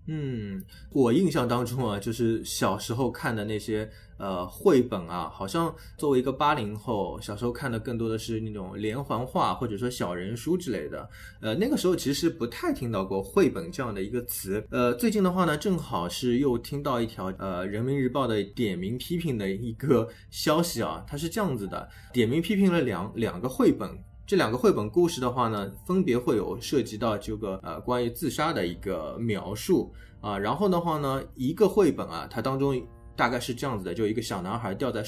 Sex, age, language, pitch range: male, 20-39, Chinese, 105-130 Hz